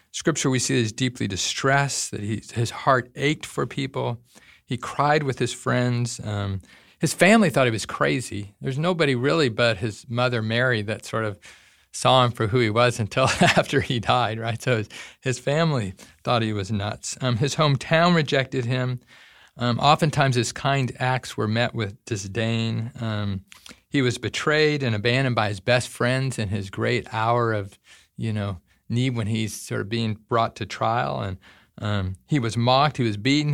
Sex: male